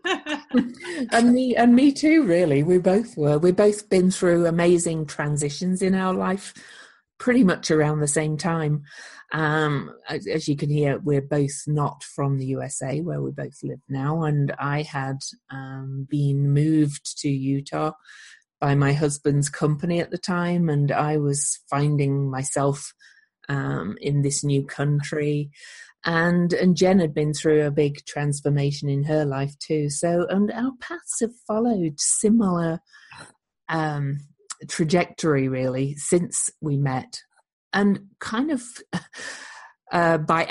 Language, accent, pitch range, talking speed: English, British, 145-190 Hz, 145 wpm